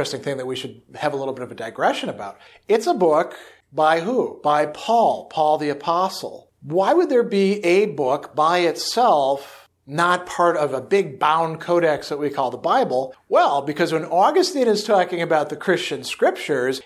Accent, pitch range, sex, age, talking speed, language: American, 150-180 Hz, male, 40-59, 190 wpm, English